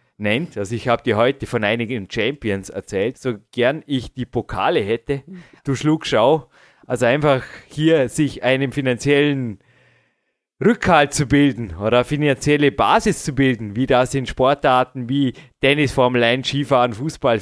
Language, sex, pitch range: German, male, 110-135 Hz